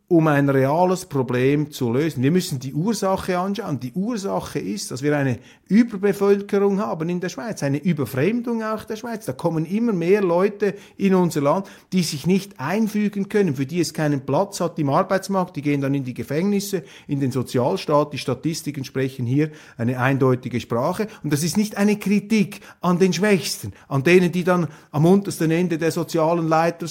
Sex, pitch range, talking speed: male, 135-200 Hz, 185 wpm